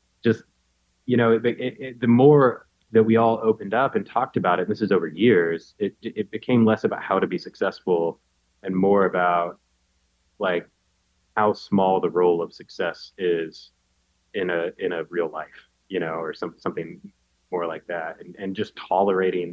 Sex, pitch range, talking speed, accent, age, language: male, 80-105 Hz, 185 wpm, American, 20-39, English